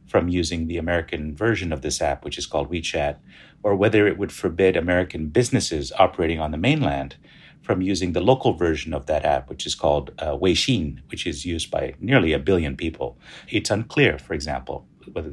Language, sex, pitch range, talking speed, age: English, male, 75-100 Hz, 190 wpm, 50-69